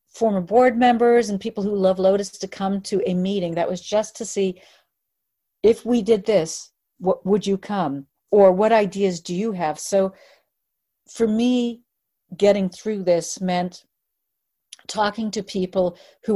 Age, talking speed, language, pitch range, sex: 50-69, 155 wpm, English, 175-215 Hz, female